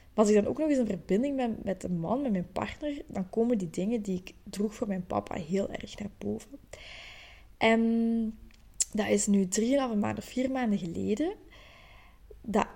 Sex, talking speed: female, 190 wpm